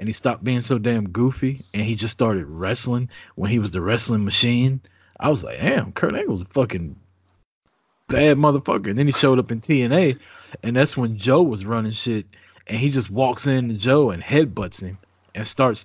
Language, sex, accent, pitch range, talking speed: English, male, American, 95-125 Hz, 210 wpm